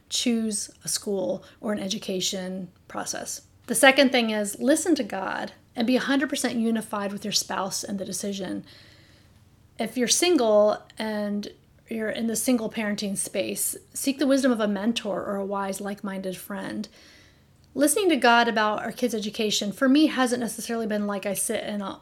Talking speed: 170 wpm